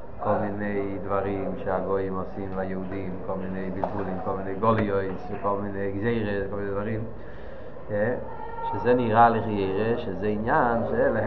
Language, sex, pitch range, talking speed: Hebrew, male, 100-150 Hz, 130 wpm